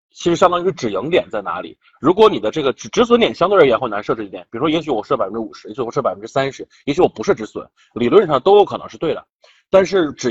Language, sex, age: Chinese, male, 20-39